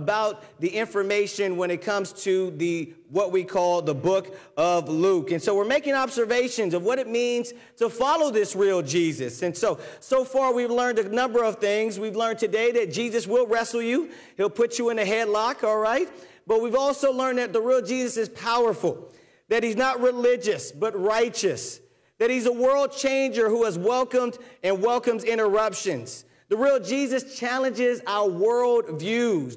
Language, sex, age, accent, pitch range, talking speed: English, male, 40-59, American, 185-245 Hz, 180 wpm